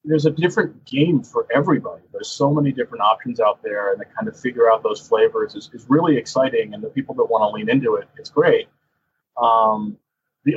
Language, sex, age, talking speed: English, male, 30-49, 215 wpm